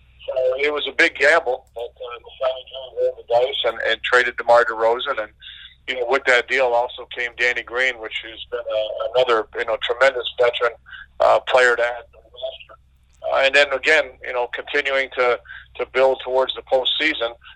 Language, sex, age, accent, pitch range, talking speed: English, male, 40-59, American, 115-135 Hz, 180 wpm